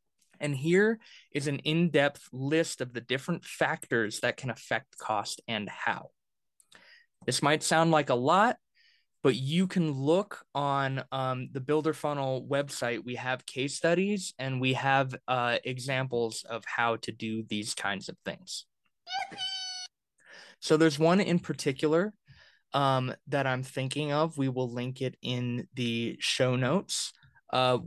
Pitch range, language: 125-155 Hz, English